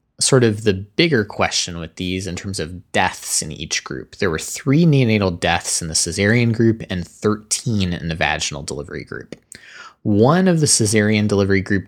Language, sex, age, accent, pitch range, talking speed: English, male, 20-39, American, 85-110 Hz, 180 wpm